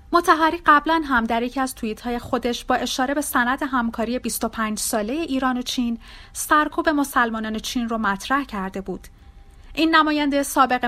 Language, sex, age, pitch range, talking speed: Persian, female, 30-49, 215-280 Hz, 165 wpm